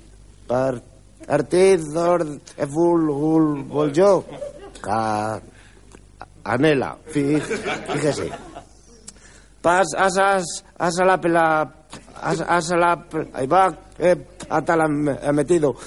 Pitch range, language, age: 130-170 Hz, Spanish, 60-79